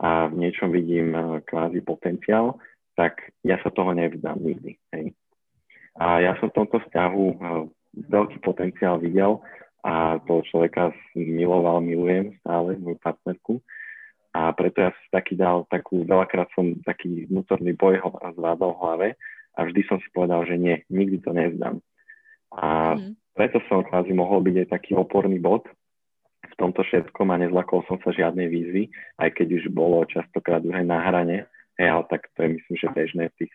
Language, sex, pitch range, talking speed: Slovak, male, 85-95 Hz, 165 wpm